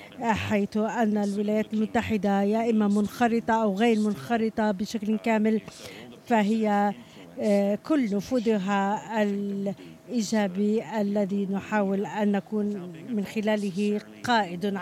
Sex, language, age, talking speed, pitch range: female, Arabic, 50-69, 95 wpm, 200-225 Hz